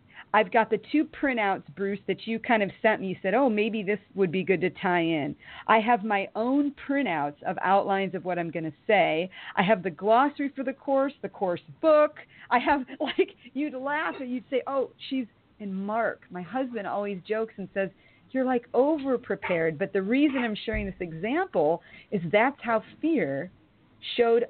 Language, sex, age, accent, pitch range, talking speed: English, female, 40-59, American, 190-265 Hz, 195 wpm